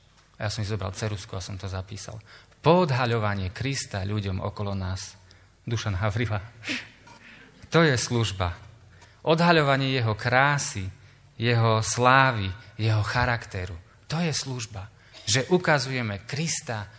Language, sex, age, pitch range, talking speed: Slovak, male, 30-49, 105-155 Hz, 110 wpm